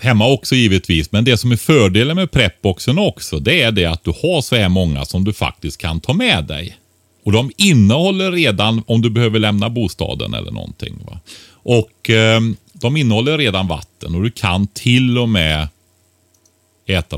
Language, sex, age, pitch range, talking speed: Swedish, male, 30-49, 80-110 Hz, 180 wpm